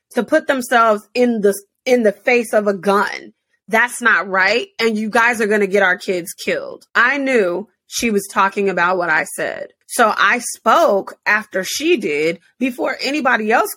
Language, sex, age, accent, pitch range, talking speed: English, female, 30-49, American, 200-255 Hz, 180 wpm